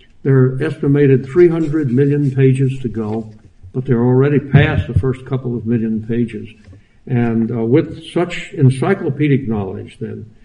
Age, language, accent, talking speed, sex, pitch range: 60-79, English, American, 145 wpm, male, 115-140 Hz